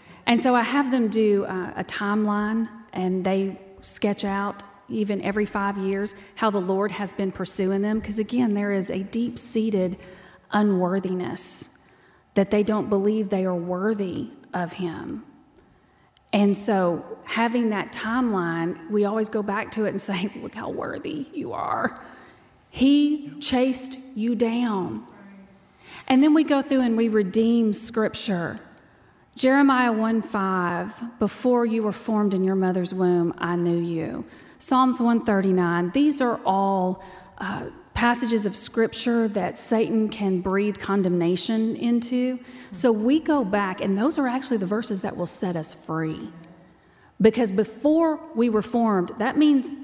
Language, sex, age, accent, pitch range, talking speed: English, female, 30-49, American, 195-245 Hz, 145 wpm